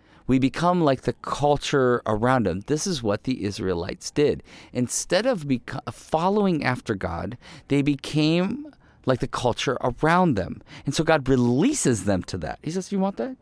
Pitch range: 100-150 Hz